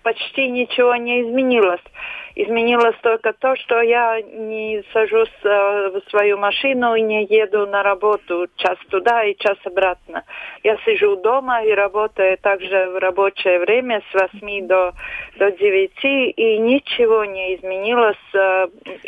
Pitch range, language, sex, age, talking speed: 195-245 Hz, Russian, female, 40-59, 130 wpm